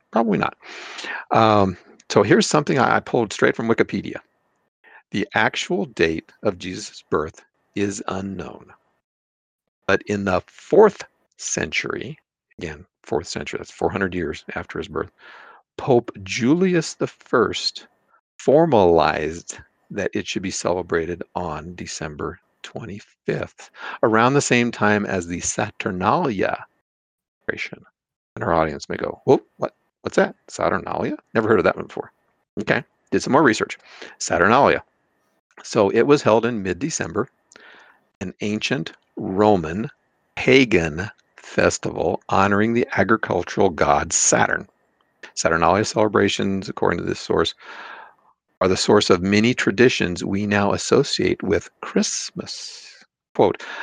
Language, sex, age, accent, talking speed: English, male, 50-69, American, 120 wpm